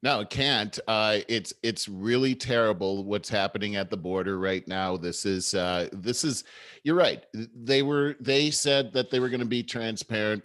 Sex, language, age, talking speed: male, English, 40-59, 190 wpm